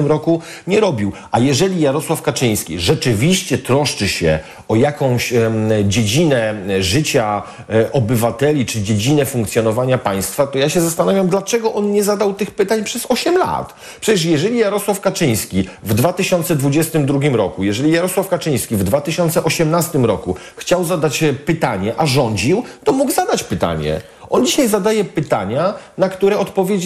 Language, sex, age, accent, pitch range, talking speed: Polish, male, 40-59, native, 130-190 Hz, 135 wpm